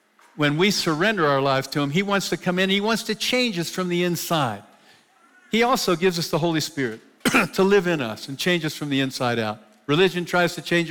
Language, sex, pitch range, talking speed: English, male, 145-190 Hz, 230 wpm